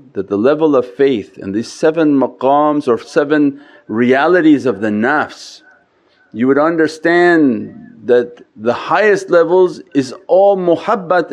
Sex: male